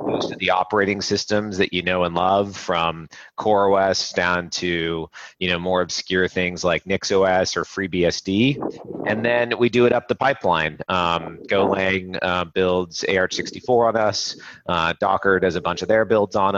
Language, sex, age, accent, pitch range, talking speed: English, male, 30-49, American, 85-100 Hz, 175 wpm